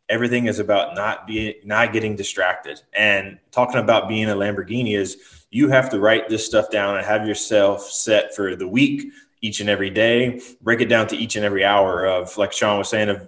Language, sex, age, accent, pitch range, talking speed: English, male, 20-39, American, 100-115 Hz, 210 wpm